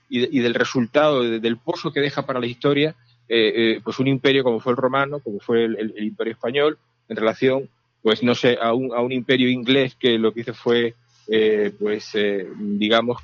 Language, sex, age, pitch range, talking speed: Spanish, male, 40-59, 115-135 Hz, 210 wpm